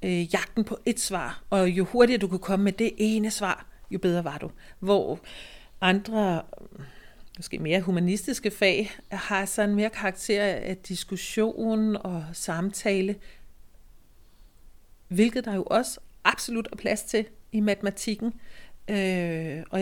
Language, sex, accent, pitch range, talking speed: Danish, female, native, 185-220 Hz, 130 wpm